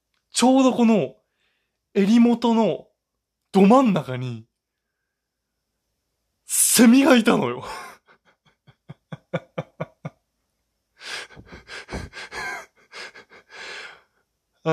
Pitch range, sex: 180-270 Hz, male